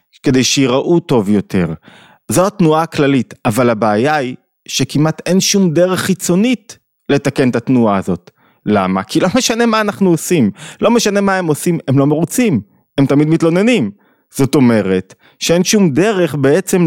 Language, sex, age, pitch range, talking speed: Hebrew, male, 30-49, 120-165 Hz, 155 wpm